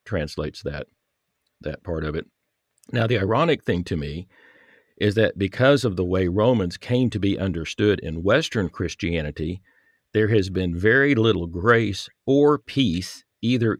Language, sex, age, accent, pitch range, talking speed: English, male, 50-69, American, 95-120 Hz, 150 wpm